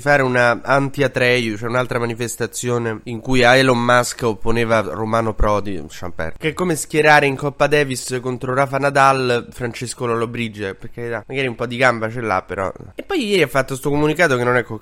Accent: native